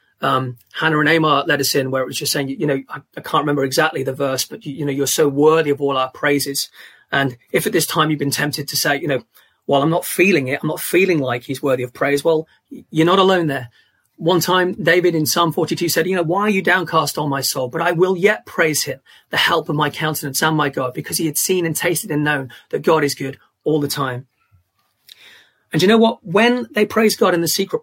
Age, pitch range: 30-49, 140-170 Hz